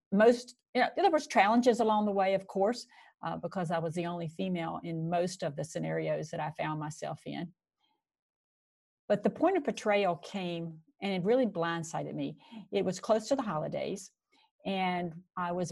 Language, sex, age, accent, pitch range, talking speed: English, female, 50-69, American, 165-210 Hz, 185 wpm